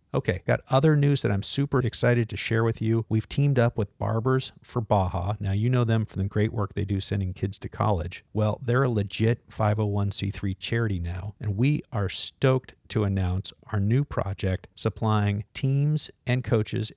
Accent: American